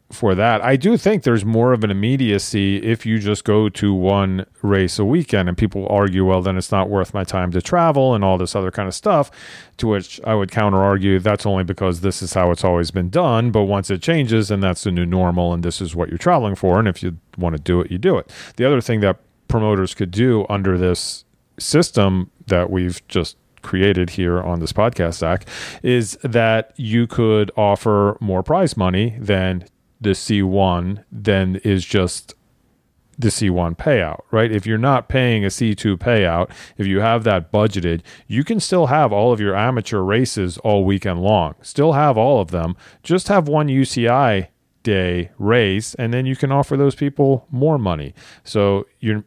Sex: male